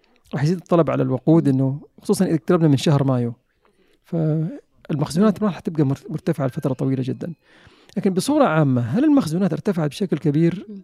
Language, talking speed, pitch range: Arabic, 145 wpm, 145-185 Hz